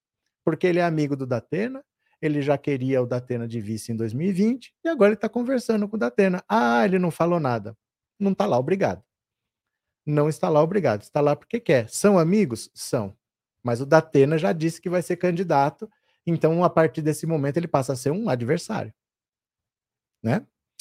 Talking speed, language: 185 wpm, Portuguese